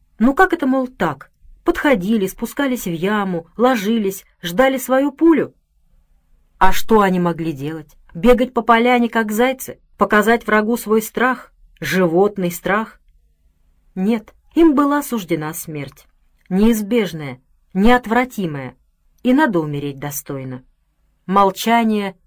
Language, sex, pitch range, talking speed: Russian, female, 170-240 Hz, 110 wpm